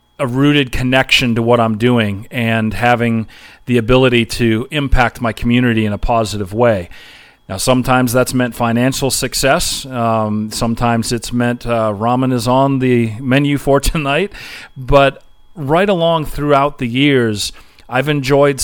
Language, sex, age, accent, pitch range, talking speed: English, male, 40-59, American, 110-130 Hz, 145 wpm